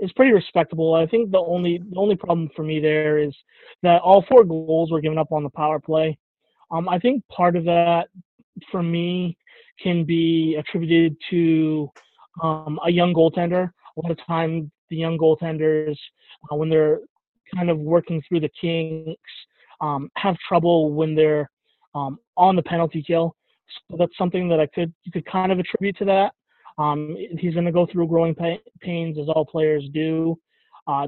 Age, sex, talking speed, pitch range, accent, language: 20-39, male, 180 wpm, 155-180 Hz, American, English